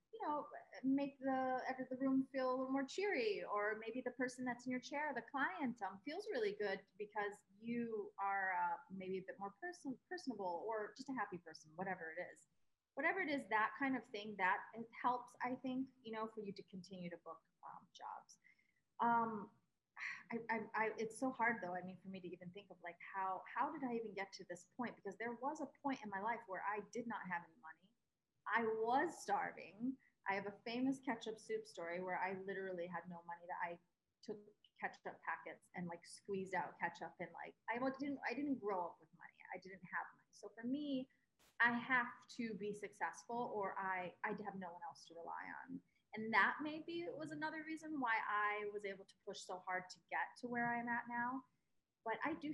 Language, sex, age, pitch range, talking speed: English, female, 30-49, 185-255 Hz, 215 wpm